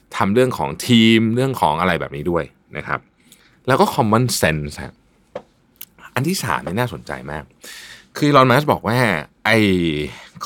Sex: male